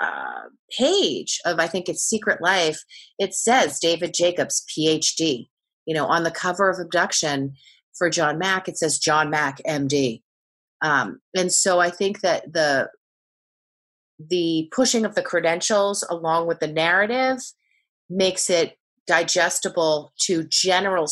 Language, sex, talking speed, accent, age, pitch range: English, female, 140 wpm, American, 30-49, 155-190 Hz